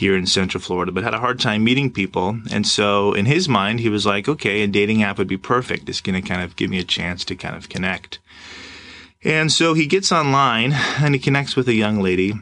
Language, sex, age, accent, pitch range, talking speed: English, male, 30-49, American, 90-110 Hz, 245 wpm